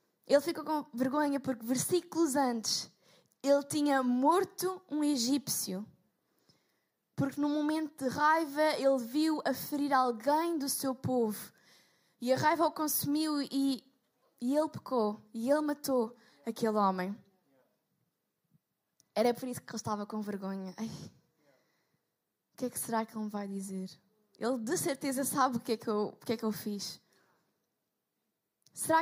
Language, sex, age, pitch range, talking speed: Portuguese, female, 10-29, 215-275 Hz, 155 wpm